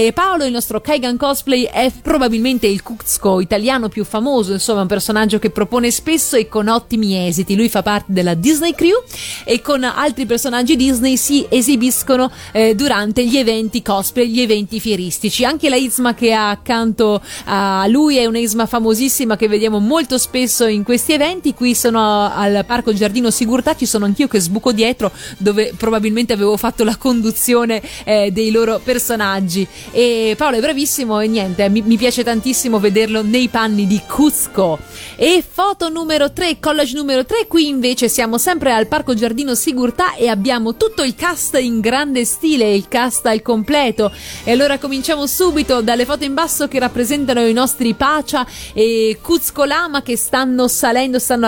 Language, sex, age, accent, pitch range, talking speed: Italian, female, 30-49, native, 220-270 Hz, 170 wpm